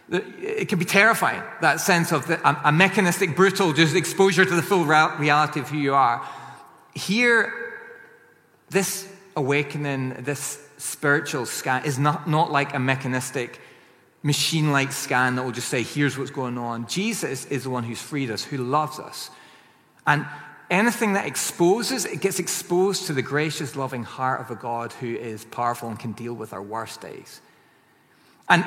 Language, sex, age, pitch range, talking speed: English, male, 30-49, 135-185 Hz, 165 wpm